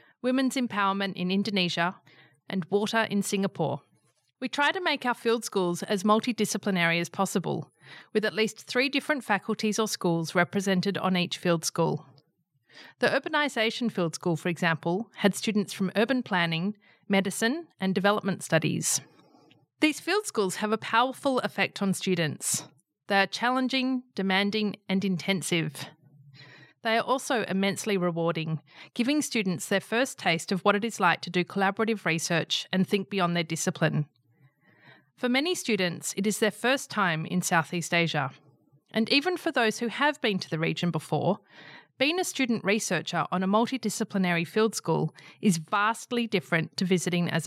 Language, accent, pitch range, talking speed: English, Australian, 170-225 Hz, 155 wpm